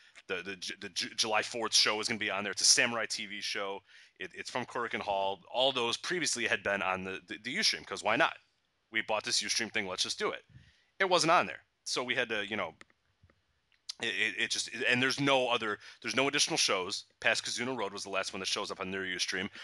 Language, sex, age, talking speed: English, male, 30-49, 250 wpm